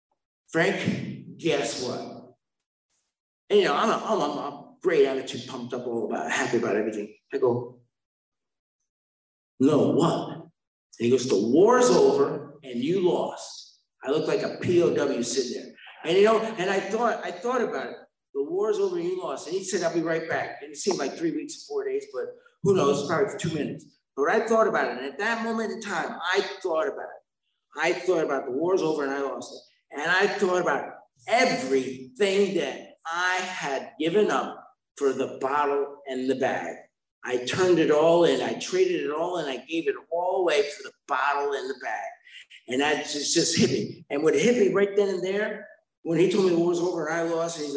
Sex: male